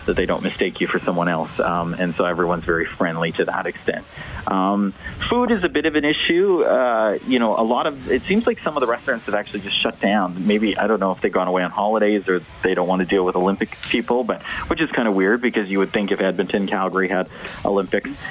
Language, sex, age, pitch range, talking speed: English, male, 40-59, 95-120 Hz, 250 wpm